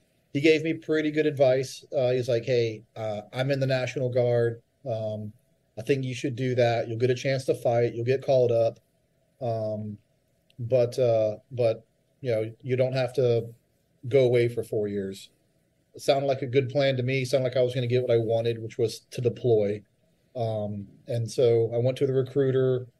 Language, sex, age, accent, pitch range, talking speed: English, male, 30-49, American, 115-135 Hz, 205 wpm